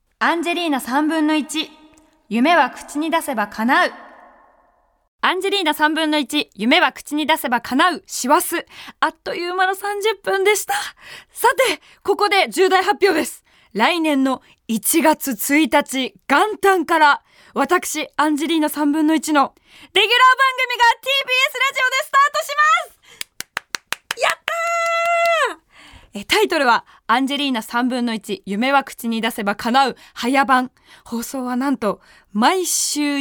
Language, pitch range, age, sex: Japanese, 265-375 Hz, 20-39, female